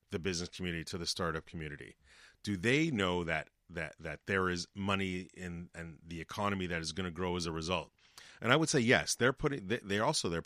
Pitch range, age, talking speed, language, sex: 85-105 Hz, 30-49, 225 wpm, English, male